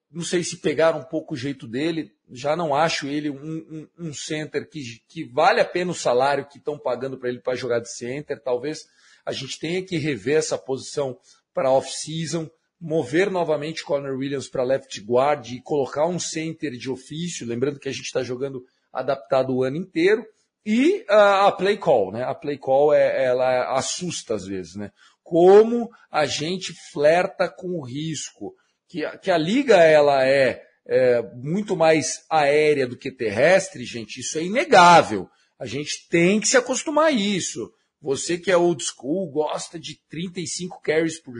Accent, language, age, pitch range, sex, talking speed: Brazilian, English, 40-59, 135-195 Hz, male, 180 wpm